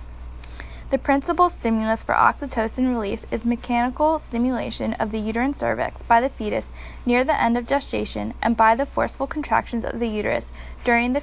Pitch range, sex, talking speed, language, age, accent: 205-250 Hz, female, 165 wpm, English, 10-29, American